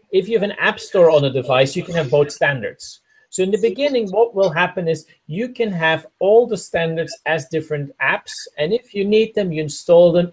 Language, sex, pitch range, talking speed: English, male, 150-200 Hz, 225 wpm